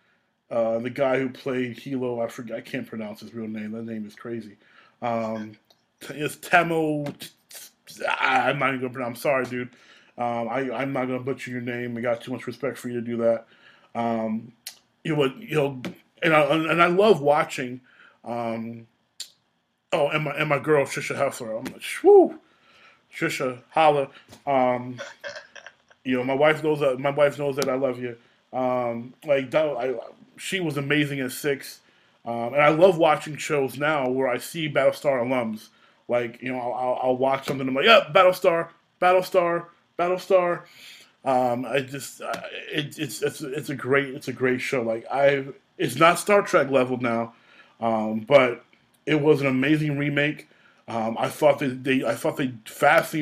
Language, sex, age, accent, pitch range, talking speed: English, male, 20-39, American, 120-150 Hz, 180 wpm